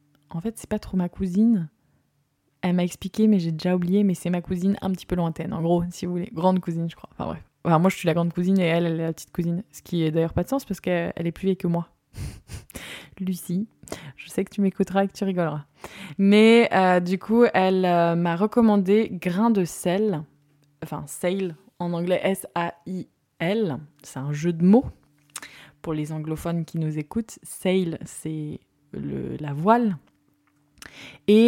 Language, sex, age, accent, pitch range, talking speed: French, female, 20-39, French, 160-195 Hz, 200 wpm